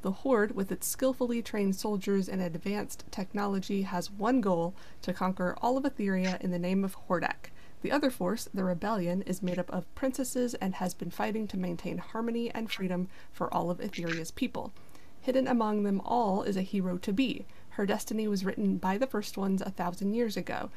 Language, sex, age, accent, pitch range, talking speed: English, female, 20-39, American, 185-240 Hz, 195 wpm